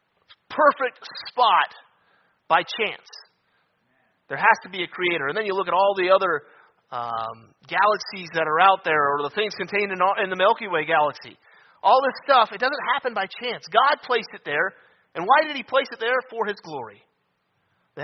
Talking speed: 190 wpm